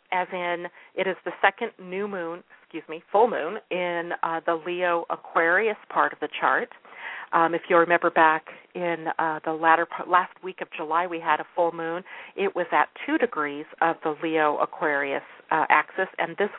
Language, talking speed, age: English, 190 wpm, 40-59